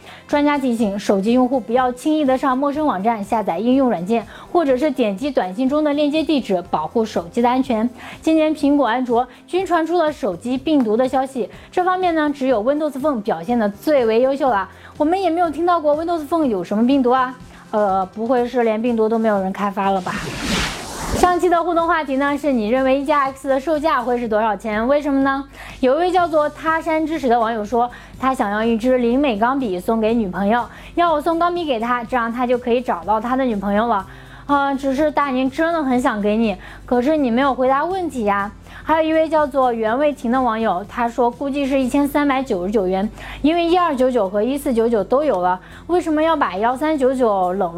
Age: 20-39